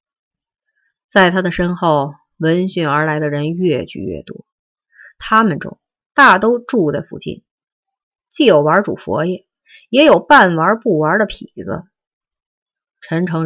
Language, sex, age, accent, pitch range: Chinese, female, 30-49, native, 150-215 Hz